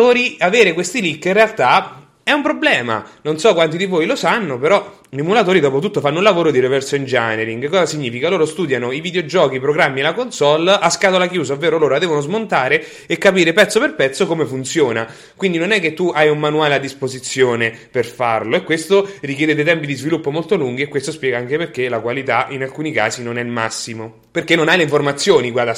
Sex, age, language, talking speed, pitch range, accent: male, 30-49, Italian, 220 wpm, 130-190 Hz, native